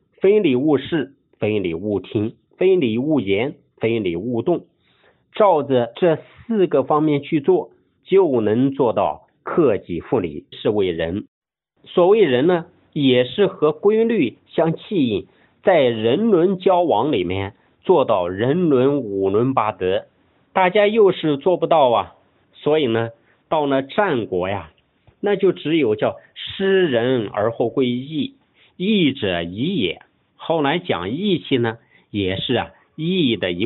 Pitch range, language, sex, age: 125-195 Hz, Chinese, male, 50-69